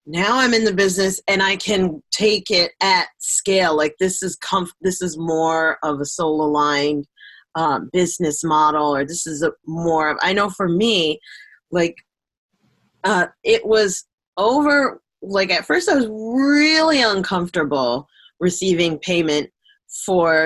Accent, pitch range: American, 160-200 Hz